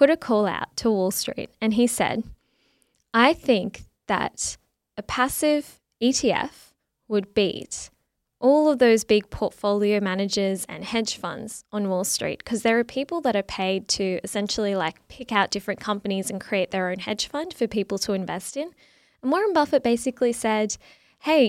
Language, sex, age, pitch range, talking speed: English, female, 10-29, 205-255 Hz, 170 wpm